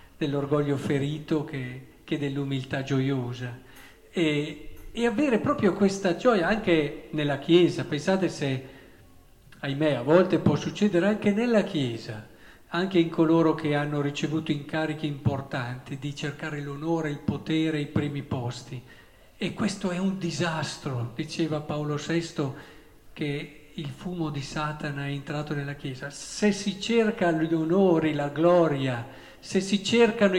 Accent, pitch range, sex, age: native, 140-175 Hz, male, 50-69